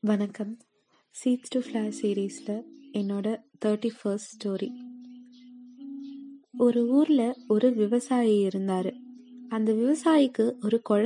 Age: 20-39